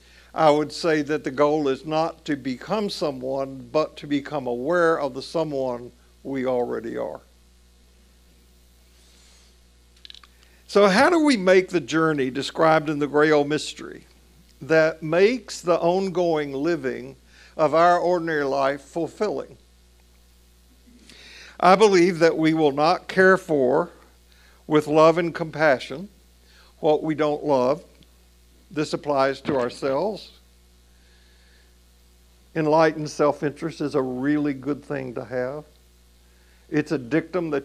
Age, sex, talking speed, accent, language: 50-69, male, 125 wpm, American, English